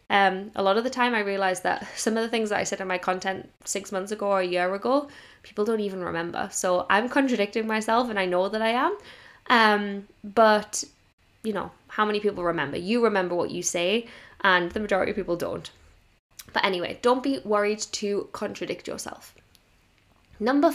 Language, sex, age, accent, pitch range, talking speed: English, female, 10-29, British, 185-230 Hz, 195 wpm